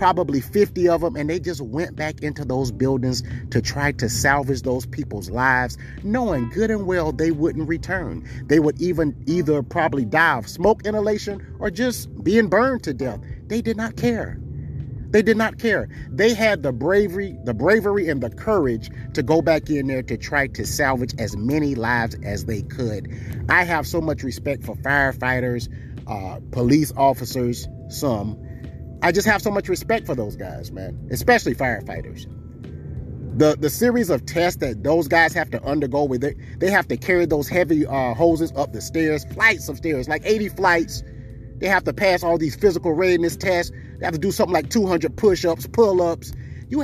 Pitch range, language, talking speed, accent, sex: 125-175 Hz, English, 185 wpm, American, male